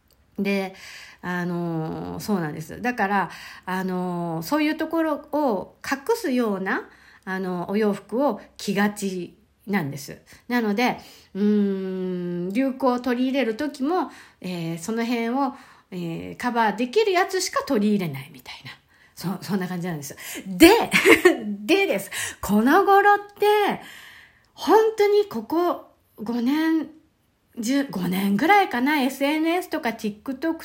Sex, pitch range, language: female, 180-285 Hz, Japanese